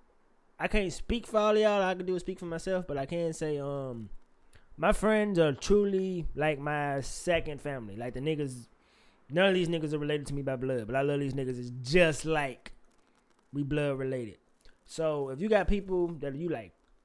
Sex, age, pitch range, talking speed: male, 20-39, 135-170 Hz, 205 wpm